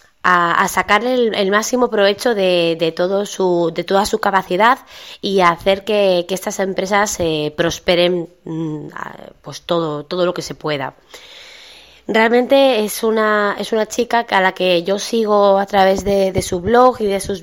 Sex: female